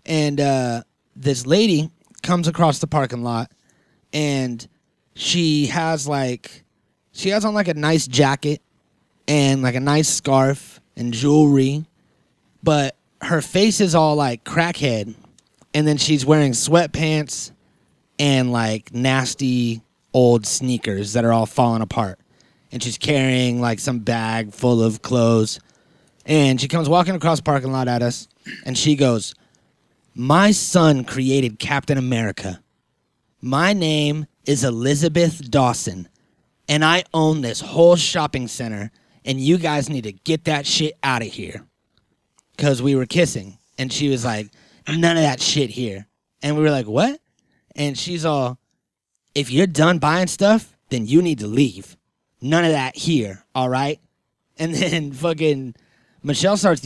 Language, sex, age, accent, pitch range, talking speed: English, male, 20-39, American, 120-160 Hz, 150 wpm